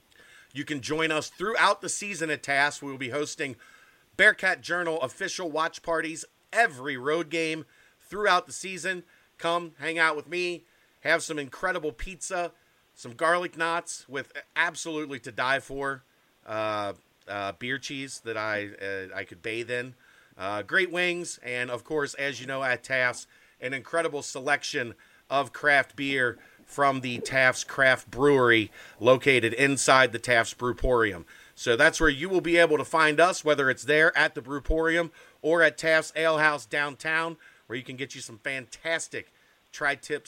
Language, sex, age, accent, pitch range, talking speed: English, male, 40-59, American, 125-160 Hz, 160 wpm